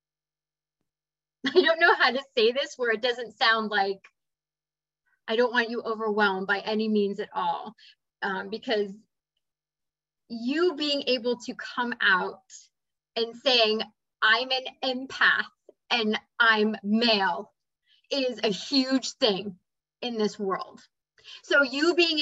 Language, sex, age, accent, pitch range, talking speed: English, female, 20-39, American, 215-280 Hz, 130 wpm